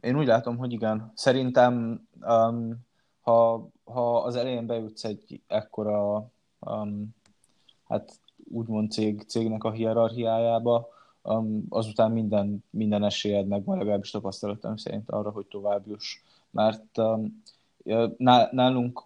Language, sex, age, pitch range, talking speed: Hungarian, male, 20-39, 105-115 Hz, 115 wpm